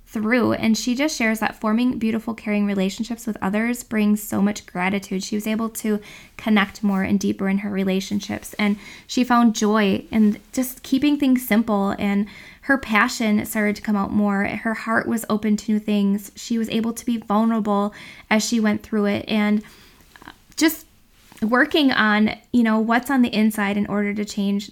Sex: female